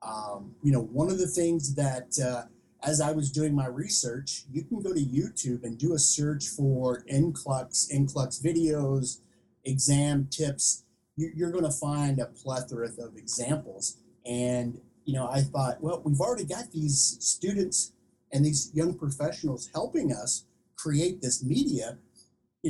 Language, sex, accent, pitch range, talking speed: English, male, American, 130-160 Hz, 155 wpm